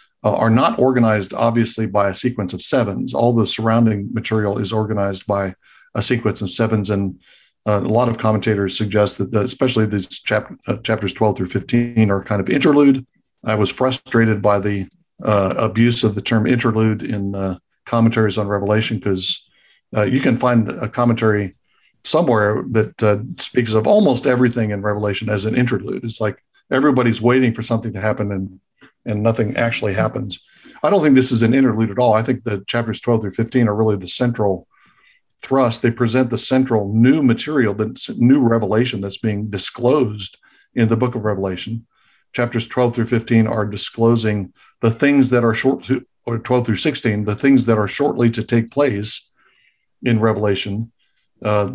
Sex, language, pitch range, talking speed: male, English, 105-120 Hz, 175 wpm